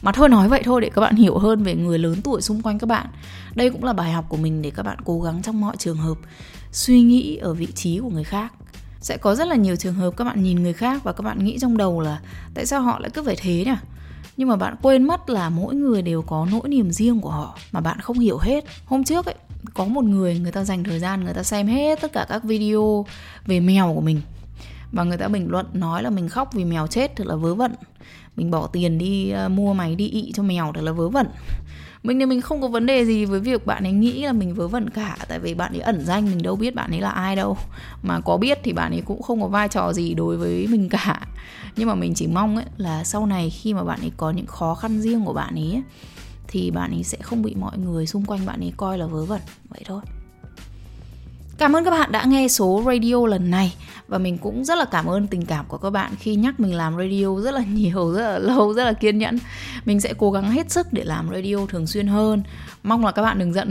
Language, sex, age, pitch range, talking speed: English, female, 20-39, 170-225 Hz, 265 wpm